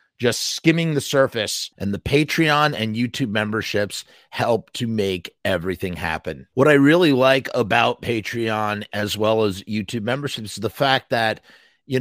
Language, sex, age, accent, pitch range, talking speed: English, male, 30-49, American, 110-135 Hz, 155 wpm